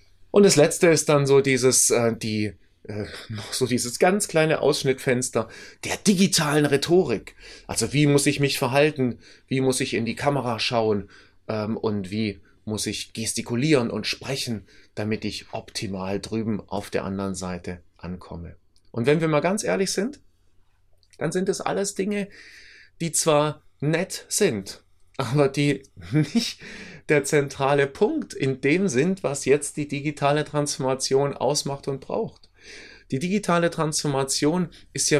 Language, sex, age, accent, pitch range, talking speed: German, male, 30-49, German, 100-150 Hz, 145 wpm